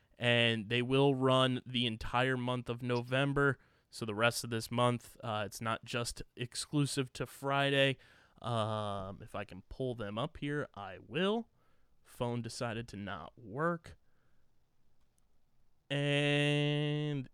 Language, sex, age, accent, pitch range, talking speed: English, male, 20-39, American, 120-150 Hz, 130 wpm